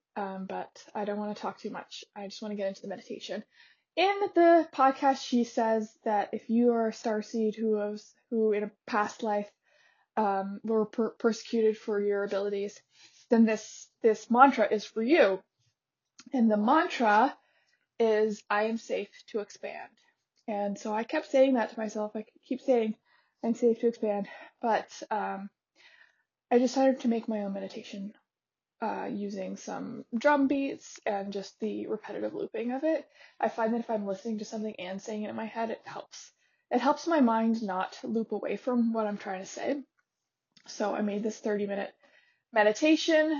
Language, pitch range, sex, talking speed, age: English, 205-250 Hz, female, 175 wpm, 20-39